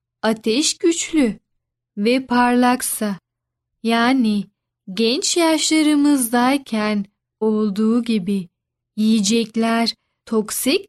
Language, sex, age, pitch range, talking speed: Turkish, female, 10-29, 215-255 Hz, 60 wpm